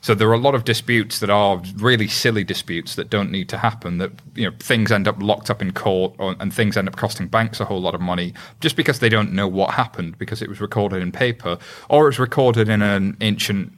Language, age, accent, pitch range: English, 30-49, British, 95-115 Hz